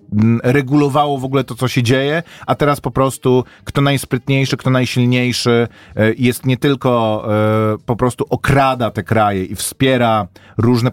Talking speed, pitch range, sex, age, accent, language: 145 wpm, 105-130 Hz, male, 30-49, native, Polish